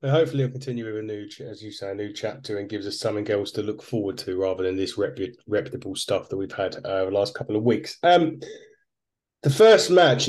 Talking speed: 235 wpm